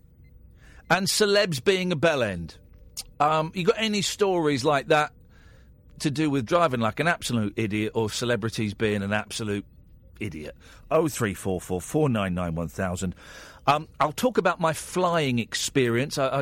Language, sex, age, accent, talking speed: English, male, 50-69, British, 130 wpm